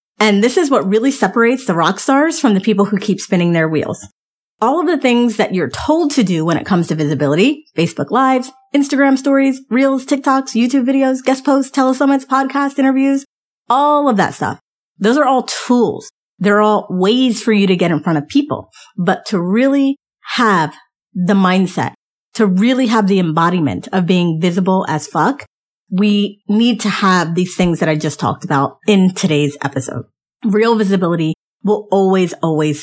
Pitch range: 175-245 Hz